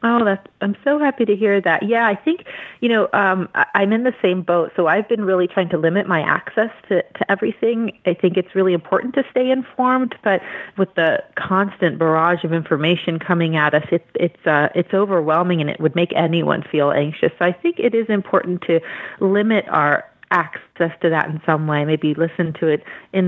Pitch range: 165-200 Hz